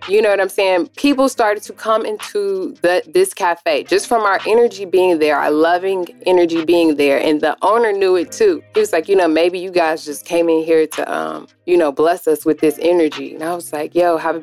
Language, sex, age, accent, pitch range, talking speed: English, female, 20-39, American, 155-200 Hz, 235 wpm